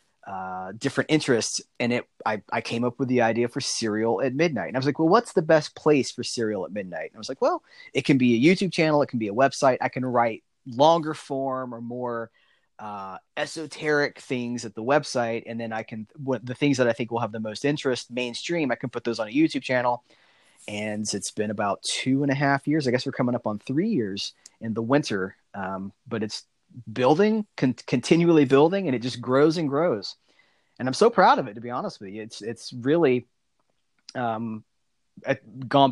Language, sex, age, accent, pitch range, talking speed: English, male, 30-49, American, 115-145 Hz, 215 wpm